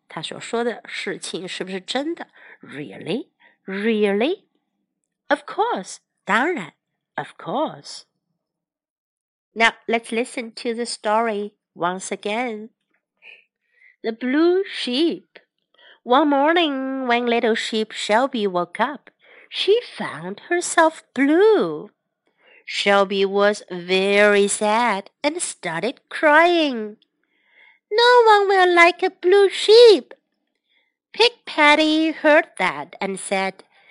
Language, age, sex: Chinese, 50-69, female